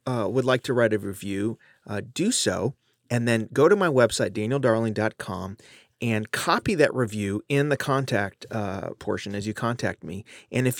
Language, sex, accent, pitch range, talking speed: English, male, American, 105-130 Hz, 180 wpm